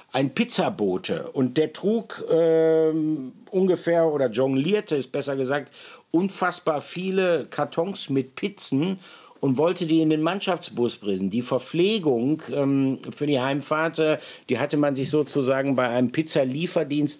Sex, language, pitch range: male, German, 125-160 Hz